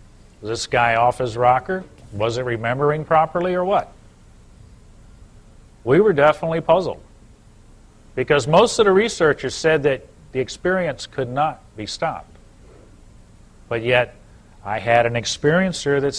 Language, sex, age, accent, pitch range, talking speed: English, male, 50-69, American, 110-155 Hz, 130 wpm